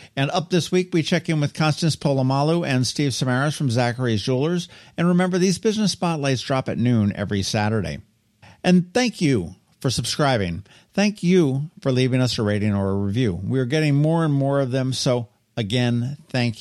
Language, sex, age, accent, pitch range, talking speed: English, male, 50-69, American, 120-170 Hz, 185 wpm